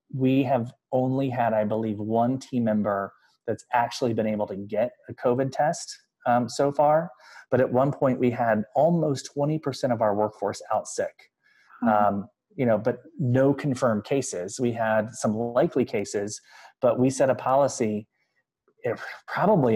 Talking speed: 160 wpm